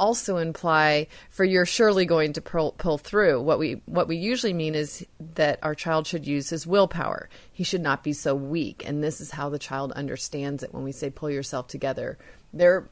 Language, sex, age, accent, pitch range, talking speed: English, female, 30-49, American, 150-195 Hz, 210 wpm